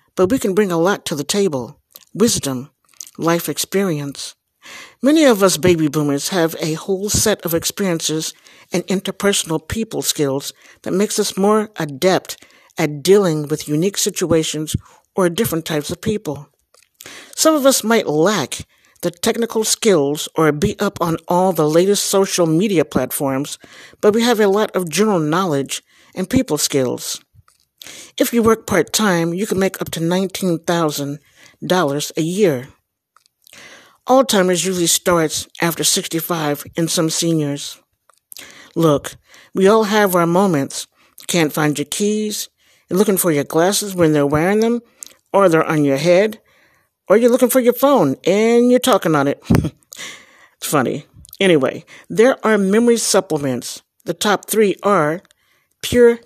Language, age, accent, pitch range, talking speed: English, 60-79, American, 155-205 Hz, 150 wpm